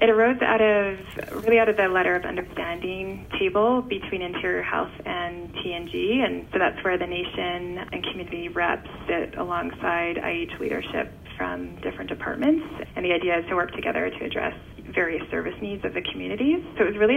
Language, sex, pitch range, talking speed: English, female, 170-205 Hz, 180 wpm